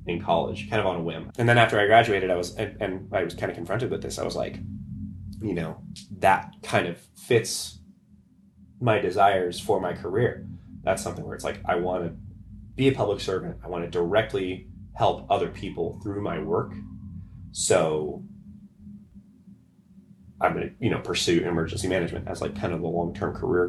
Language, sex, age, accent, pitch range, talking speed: English, male, 30-49, American, 85-105 Hz, 185 wpm